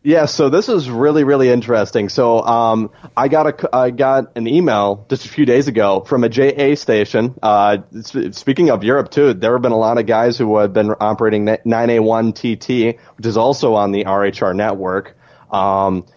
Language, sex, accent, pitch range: English, male, American, 105-120 Hz